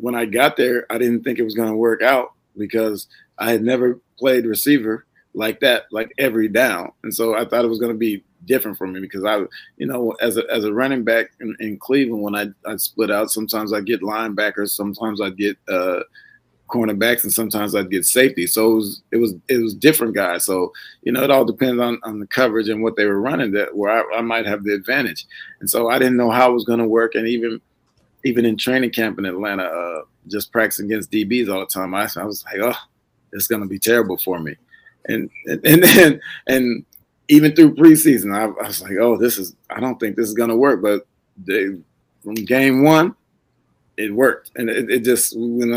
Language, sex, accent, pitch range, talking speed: English, male, American, 110-125 Hz, 225 wpm